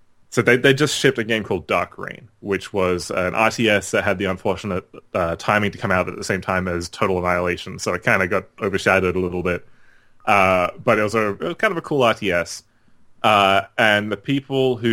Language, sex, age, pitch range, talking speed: English, male, 20-39, 90-110 Hz, 225 wpm